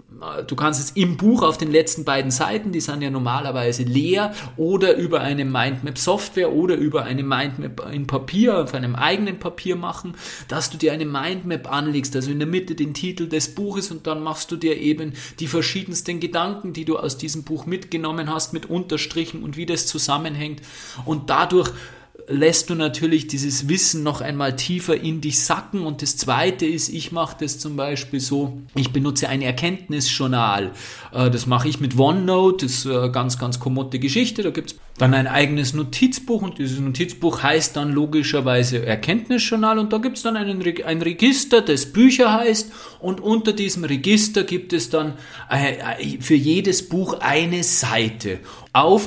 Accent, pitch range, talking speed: German, 140-175 Hz, 175 wpm